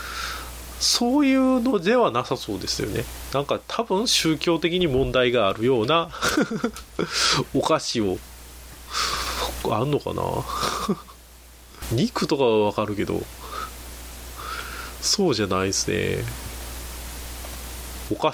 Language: Japanese